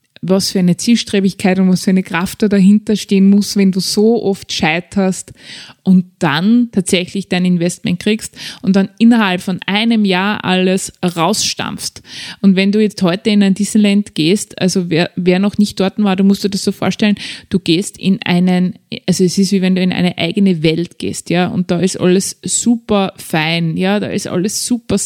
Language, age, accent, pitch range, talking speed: German, 20-39, Austrian, 180-205 Hz, 195 wpm